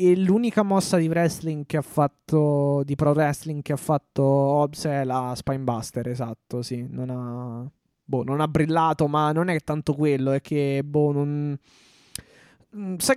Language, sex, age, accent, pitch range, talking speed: Italian, male, 20-39, native, 140-165 Hz, 165 wpm